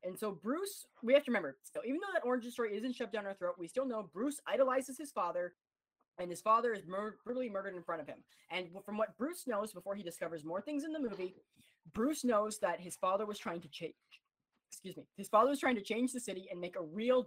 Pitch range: 185-265 Hz